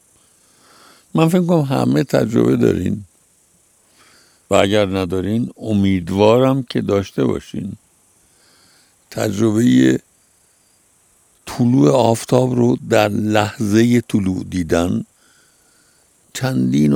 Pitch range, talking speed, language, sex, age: 90-125 Hz, 75 wpm, Persian, male, 60-79